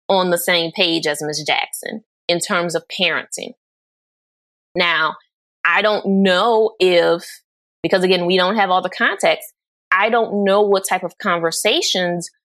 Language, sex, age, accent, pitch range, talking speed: English, female, 20-39, American, 170-210 Hz, 150 wpm